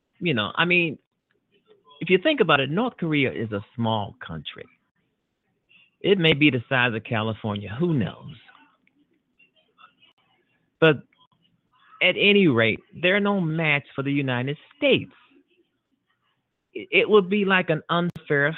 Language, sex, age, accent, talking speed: English, male, 50-69, American, 130 wpm